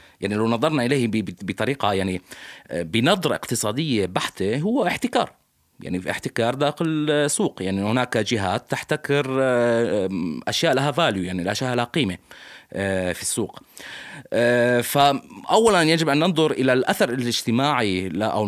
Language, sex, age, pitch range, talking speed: Arabic, male, 30-49, 95-130 Hz, 120 wpm